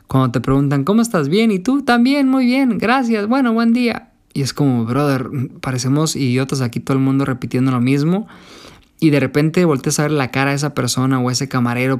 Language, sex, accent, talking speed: Spanish, male, Mexican, 215 wpm